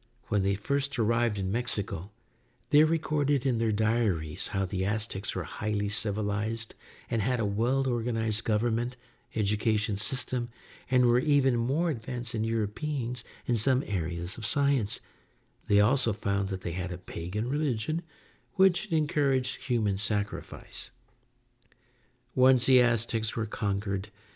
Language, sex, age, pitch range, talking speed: English, male, 60-79, 100-125 Hz, 135 wpm